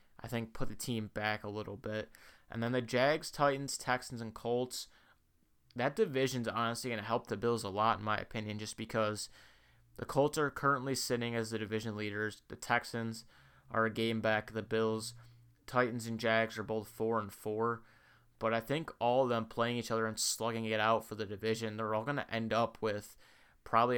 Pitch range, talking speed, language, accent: 110-120 Hz, 200 wpm, English, American